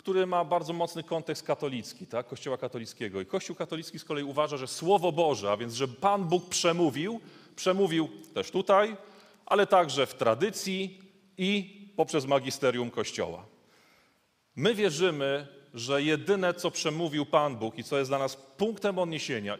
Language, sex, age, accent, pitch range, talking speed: Polish, male, 30-49, native, 135-195 Hz, 155 wpm